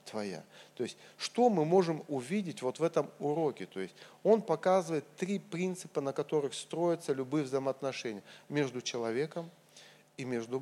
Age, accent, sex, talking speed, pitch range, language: 40-59, native, male, 140 wpm, 140-190 Hz, Russian